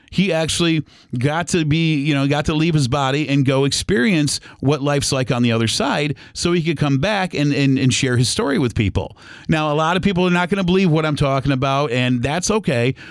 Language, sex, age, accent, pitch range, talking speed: English, male, 40-59, American, 130-165 Hz, 240 wpm